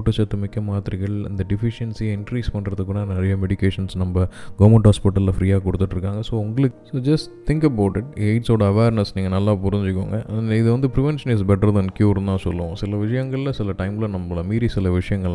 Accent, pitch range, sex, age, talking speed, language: native, 95-110 Hz, male, 20-39, 165 wpm, Tamil